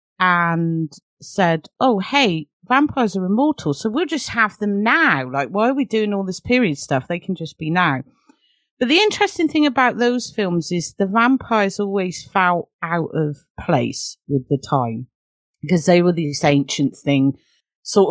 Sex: female